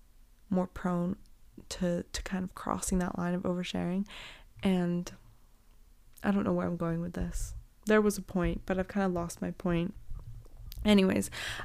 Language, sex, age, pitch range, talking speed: English, female, 20-39, 175-210 Hz, 165 wpm